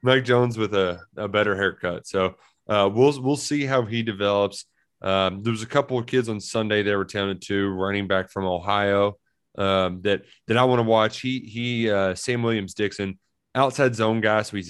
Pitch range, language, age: 95-115 Hz, English, 20-39